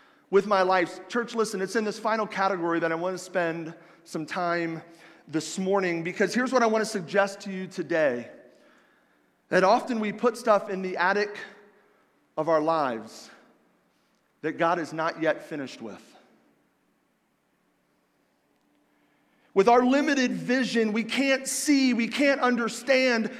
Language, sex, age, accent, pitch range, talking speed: English, male, 40-59, American, 220-280 Hz, 145 wpm